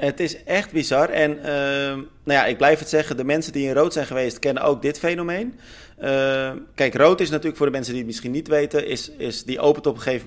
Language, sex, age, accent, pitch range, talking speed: Dutch, male, 30-49, Dutch, 120-155 Hz, 250 wpm